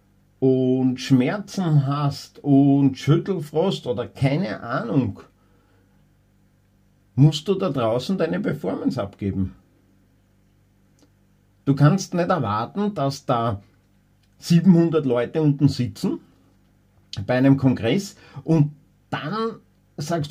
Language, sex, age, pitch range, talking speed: German, male, 50-69, 100-145 Hz, 90 wpm